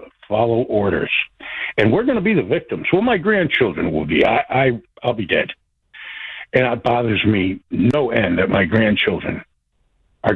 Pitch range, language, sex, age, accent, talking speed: 115-170 Hz, English, male, 60-79, American, 170 wpm